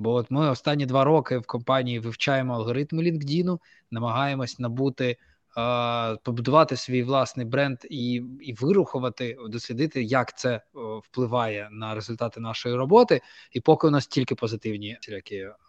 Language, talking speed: Ukrainian, 135 wpm